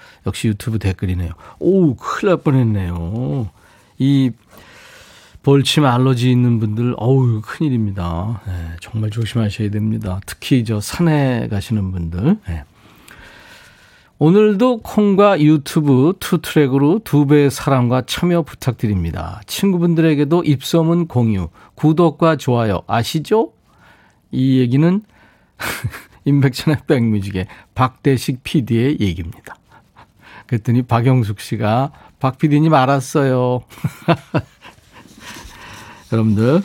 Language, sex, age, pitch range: Korean, male, 40-59, 105-150 Hz